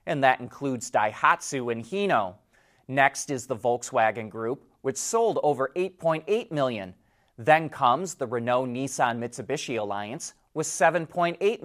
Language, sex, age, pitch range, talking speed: English, male, 30-49, 125-180 Hz, 130 wpm